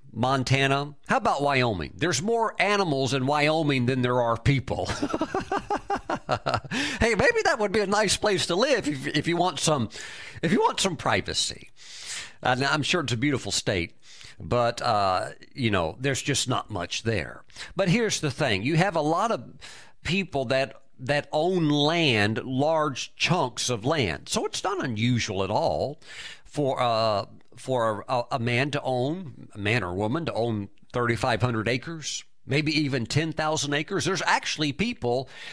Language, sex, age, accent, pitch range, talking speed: English, male, 50-69, American, 120-165 Hz, 160 wpm